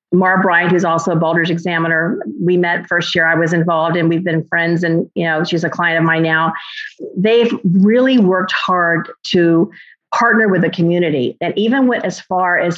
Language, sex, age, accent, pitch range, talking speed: English, female, 40-59, American, 170-200 Hz, 195 wpm